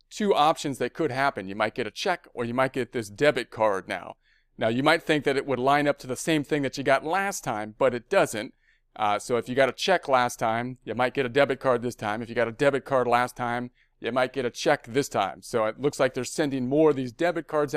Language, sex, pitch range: English, male, 120-150 Hz